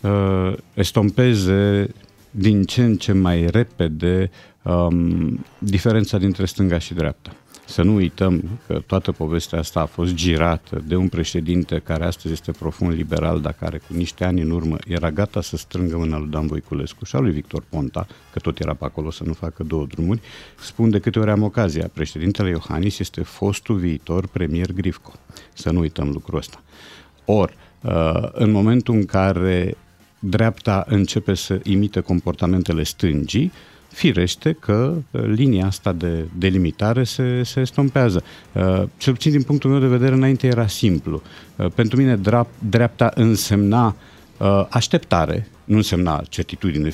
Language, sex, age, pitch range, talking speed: Romanian, male, 50-69, 85-115 Hz, 155 wpm